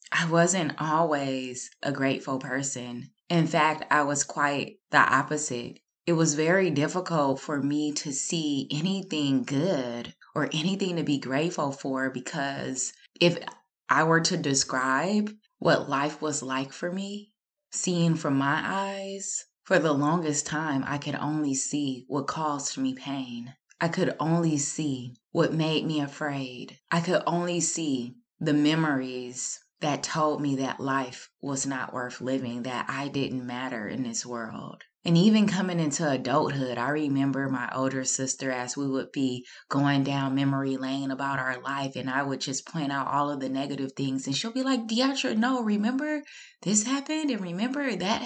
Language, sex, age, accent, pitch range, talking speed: English, female, 20-39, American, 135-170 Hz, 165 wpm